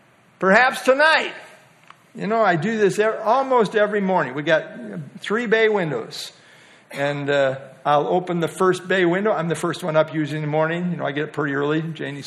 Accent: American